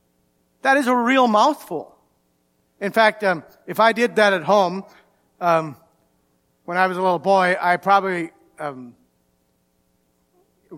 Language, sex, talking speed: English, male, 135 wpm